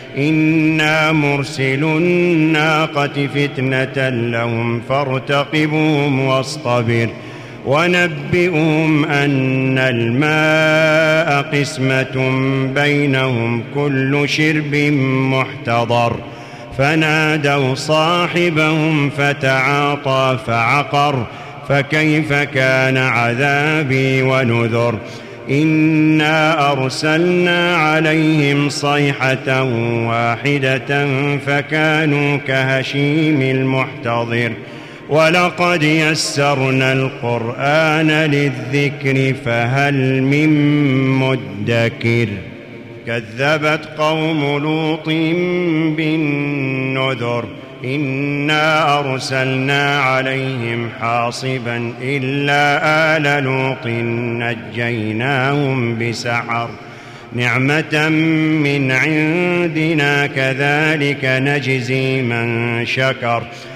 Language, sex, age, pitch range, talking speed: Arabic, male, 40-59, 130-155 Hz, 55 wpm